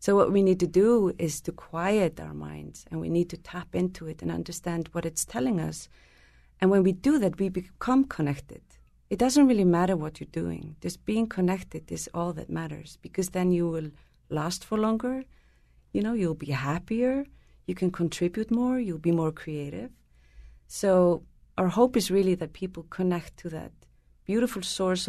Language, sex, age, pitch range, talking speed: English, female, 30-49, 155-190 Hz, 185 wpm